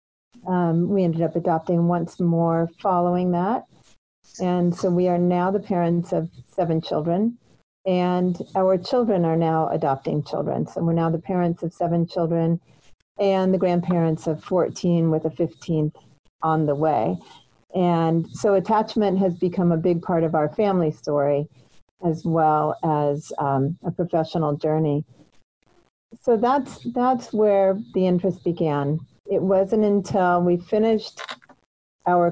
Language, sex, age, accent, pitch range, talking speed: English, female, 40-59, American, 155-180 Hz, 145 wpm